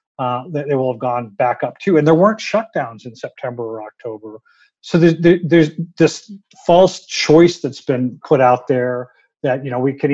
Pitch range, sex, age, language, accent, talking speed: 125-155 Hz, male, 50-69, English, American, 195 wpm